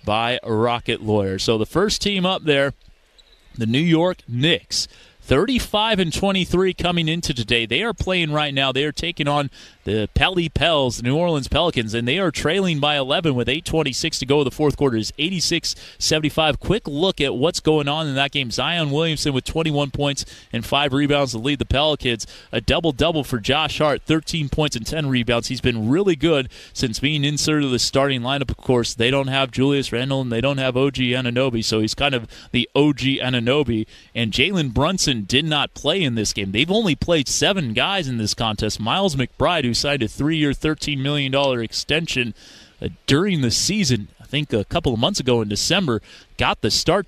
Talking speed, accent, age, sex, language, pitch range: 200 wpm, American, 30-49, male, English, 115-155 Hz